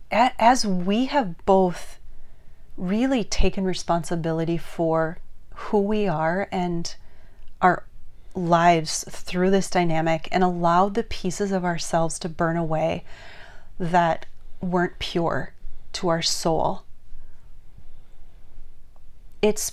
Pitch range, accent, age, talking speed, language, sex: 160-185 Hz, American, 30-49, 100 wpm, English, female